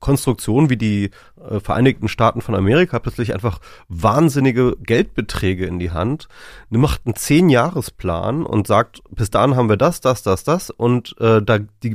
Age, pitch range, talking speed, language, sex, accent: 30-49, 95-120 Hz, 165 wpm, German, male, German